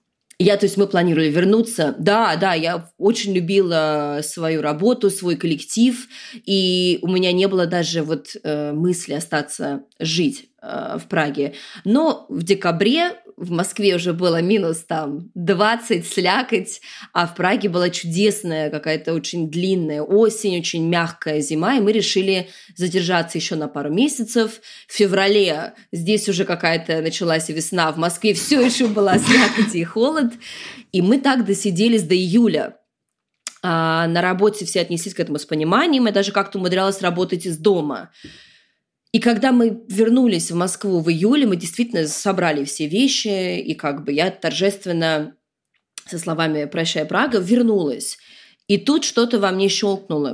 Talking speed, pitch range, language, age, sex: 150 wpm, 160-210 Hz, Russian, 20-39, female